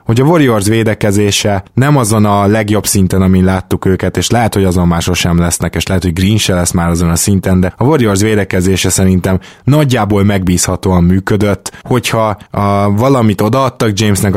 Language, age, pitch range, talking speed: Hungarian, 20-39, 95-105 Hz, 170 wpm